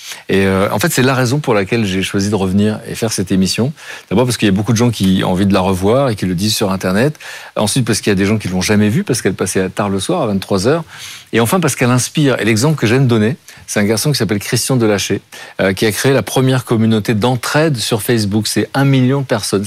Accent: French